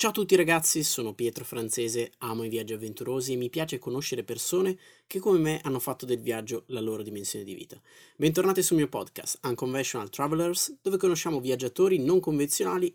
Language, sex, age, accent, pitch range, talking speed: Italian, male, 20-39, native, 115-165 Hz, 180 wpm